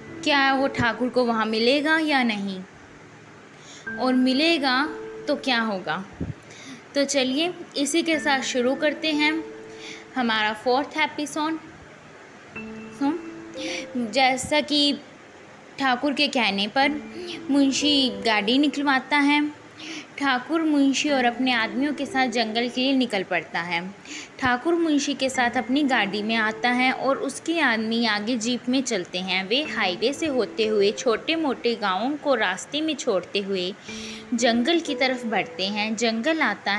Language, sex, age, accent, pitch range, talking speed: Hindi, female, 20-39, native, 220-285 Hz, 140 wpm